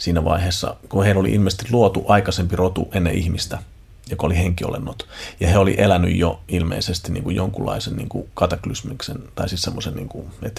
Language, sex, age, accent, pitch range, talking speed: Finnish, male, 40-59, native, 90-110 Hz, 175 wpm